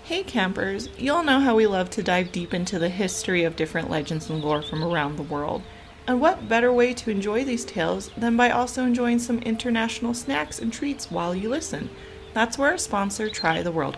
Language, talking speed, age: English, 210 wpm, 30-49